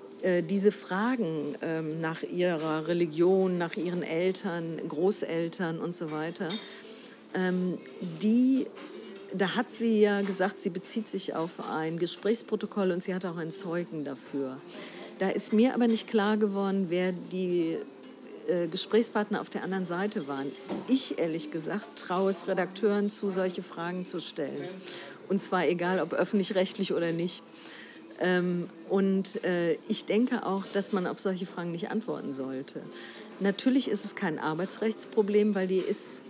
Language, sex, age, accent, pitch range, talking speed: German, female, 50-69, German, 170-210 Hz, 145 wpm